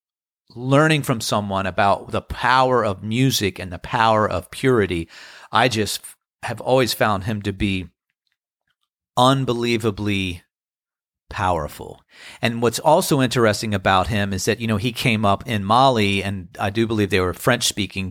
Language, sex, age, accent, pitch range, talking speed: English, male, 40-59, American, 100-125 Hz, 150 wpm